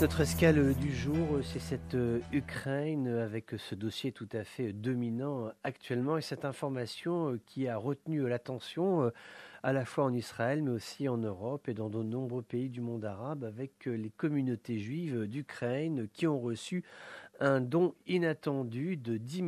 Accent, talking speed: French, 160 wpm